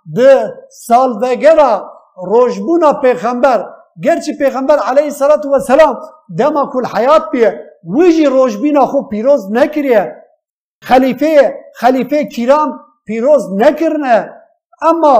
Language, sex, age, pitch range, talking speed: Turkish, male, 50-69, 250-305 Hz, 100 wpm